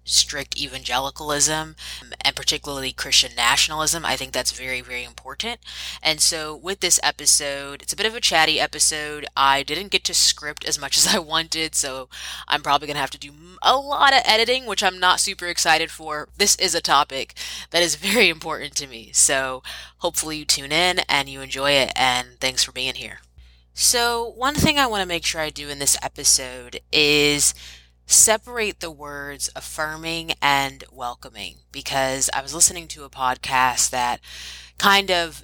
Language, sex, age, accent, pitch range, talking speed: English, female, 20-39, American, 130-170 Hz, 180 wpm